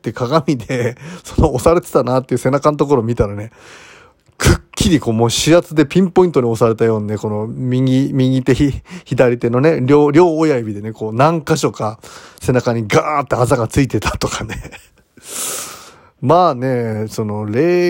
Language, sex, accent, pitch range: Japanese, male, native, 115-170 Hz